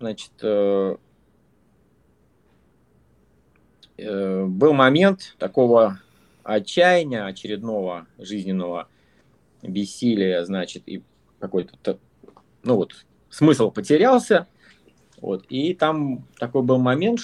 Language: Russian